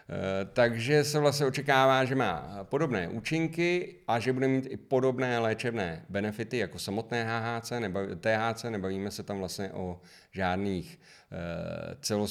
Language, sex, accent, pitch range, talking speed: Czech, male, native, 100-130 Hz, 120 wpm